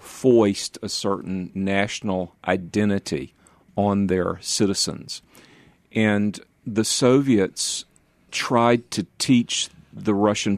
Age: 50-69